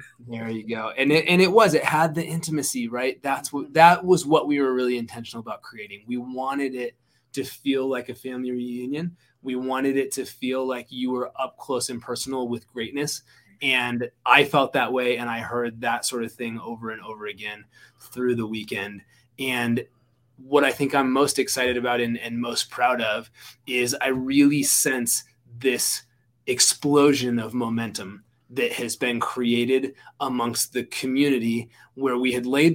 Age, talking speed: 20-39, 180 wpm